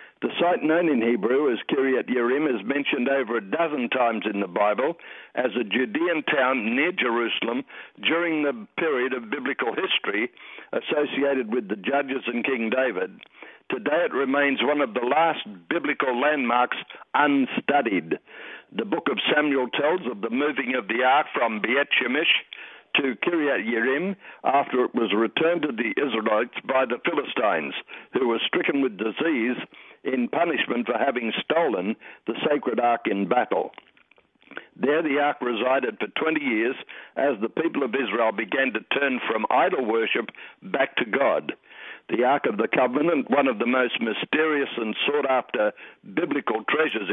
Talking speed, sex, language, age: 155 wpm, male, English, 60-79